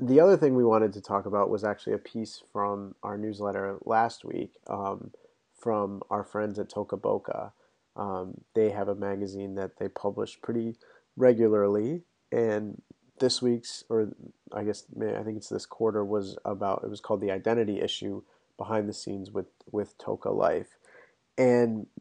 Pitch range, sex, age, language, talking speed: 100-115 Hz, male, 30-49, English, 165 wpm